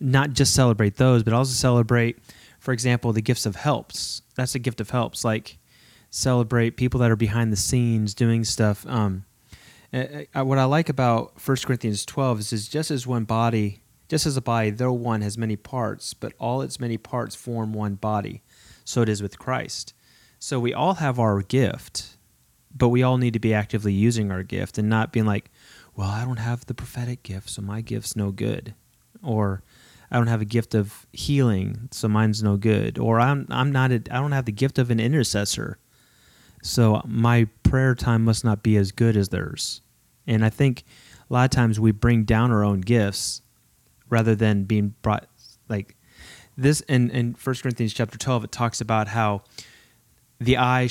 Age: 30-49